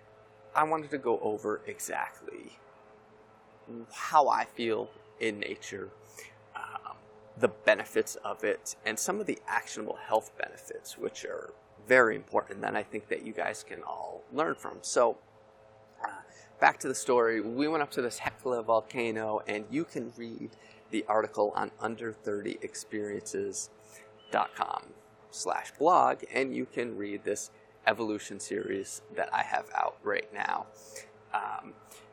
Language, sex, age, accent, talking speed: English, male, 30-49, American, 140 wpm